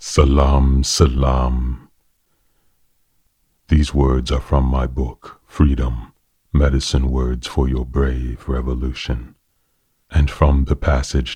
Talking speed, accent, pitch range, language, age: 100 wpm, American, 65-75 Hz, English, 40-59